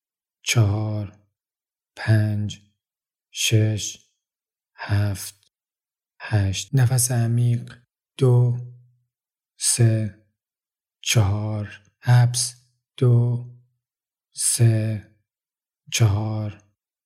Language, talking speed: Persian, 50 wpm